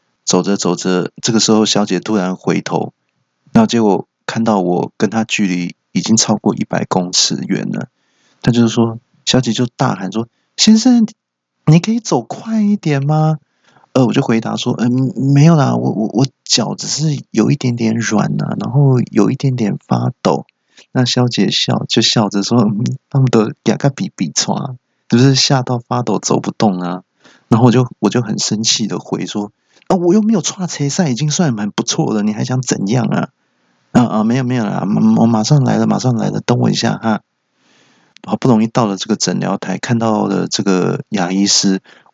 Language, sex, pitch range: Chinese, male, 105-135 Hz